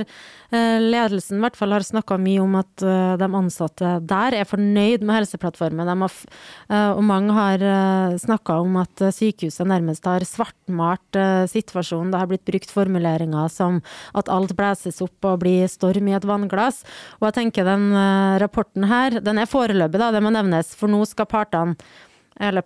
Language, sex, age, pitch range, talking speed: English, female, 20-39, 180-210 Hz, 165 wpm